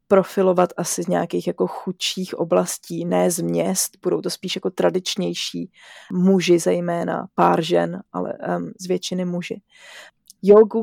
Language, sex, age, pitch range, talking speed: Slovak, female, 20-39, 170-195 Hz, 135 wpm